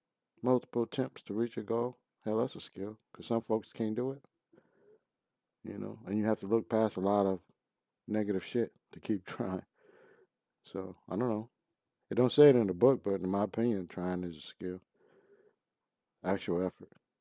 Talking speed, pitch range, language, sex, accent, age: 185 wpm, 95-120 Hz, English, male, American, 50-69